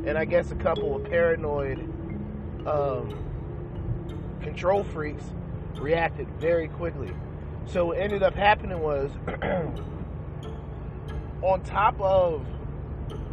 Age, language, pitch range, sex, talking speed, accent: 30-49, English, 110-150 Hz, male, 100 wpm, American